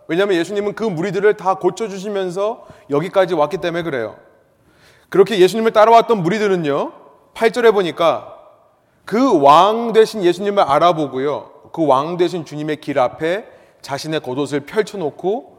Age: 30-49